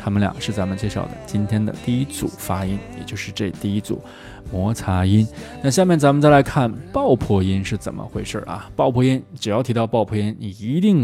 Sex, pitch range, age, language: male, 100-135 Hz, 20-39, Chinese